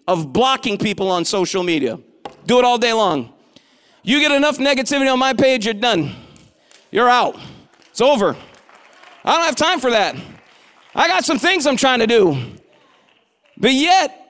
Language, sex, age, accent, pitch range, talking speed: English, male, 40-59, American, 210-280 Hz, 170 wpm